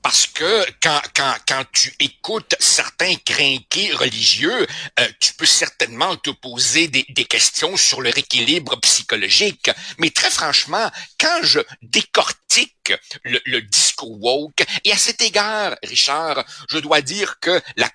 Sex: male